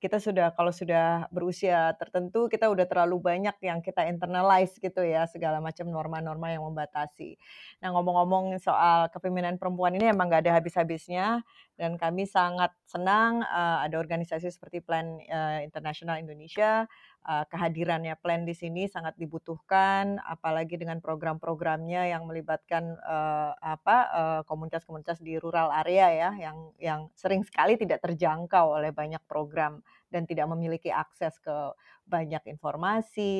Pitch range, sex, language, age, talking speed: 160-180 Hz, female, Indonesian, 30-49, 130 wpm